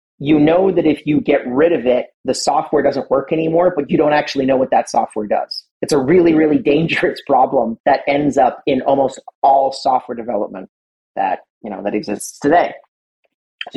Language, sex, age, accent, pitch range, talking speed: English, male, 40-59, American, 135-170 Hz, 190 wpm